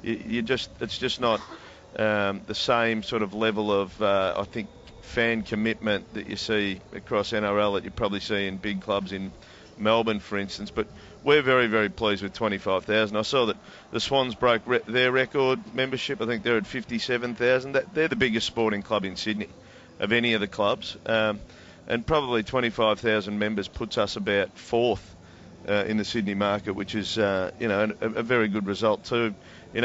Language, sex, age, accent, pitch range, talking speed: English, male, 40-59, Australian, 100-115 Hz, 185 wpm